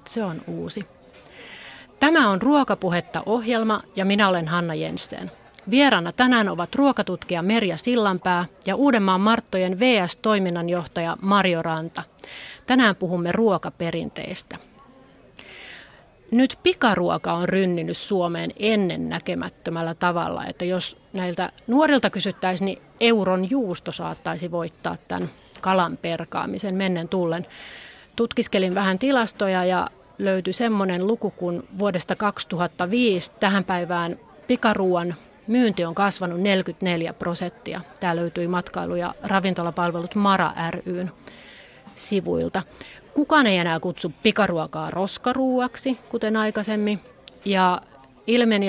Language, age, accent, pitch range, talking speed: Finnish, 30-49, native, 175-215 Hz, 105 wpm